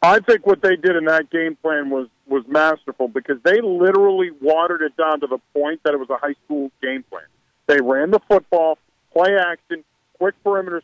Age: 50-69